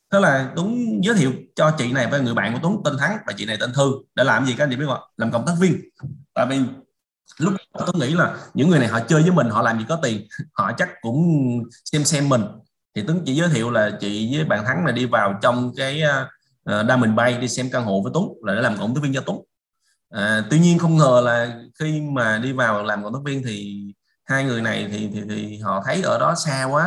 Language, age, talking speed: Vietnamese, 20-39, 255 wpm